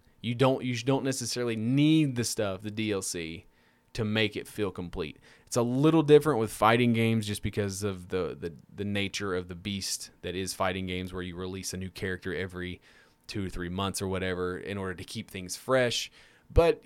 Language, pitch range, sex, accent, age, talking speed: English, 95-120 Hz, male, American, 20-39, 200 wpm